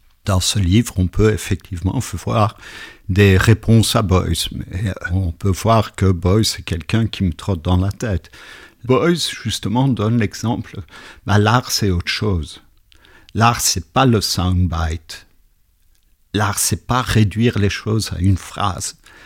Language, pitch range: French, 95-120 Hz